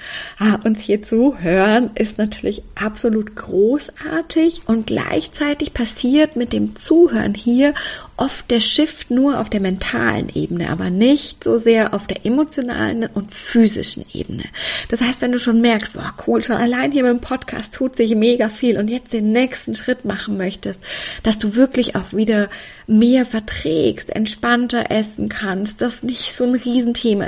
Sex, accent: female, German